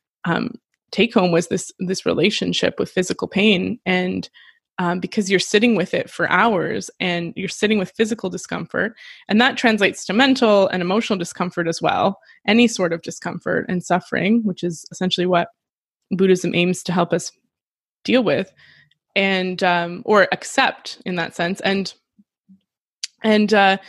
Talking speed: 155 wpm